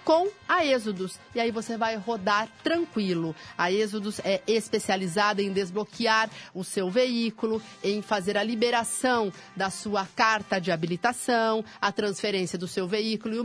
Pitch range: 195-235 Hz